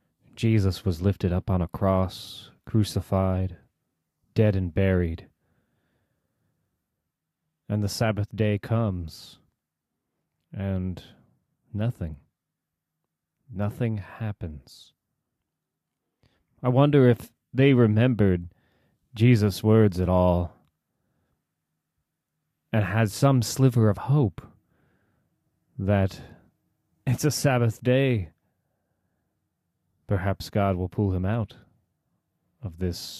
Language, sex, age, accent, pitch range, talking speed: English, male, 30-49, American, 90-115 Hz, 85 wpm